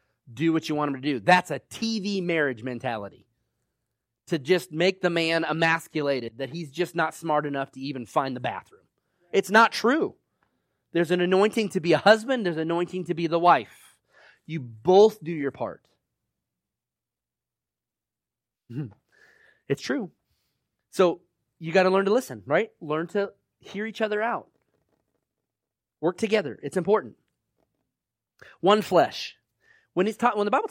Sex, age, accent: male, 30-49, American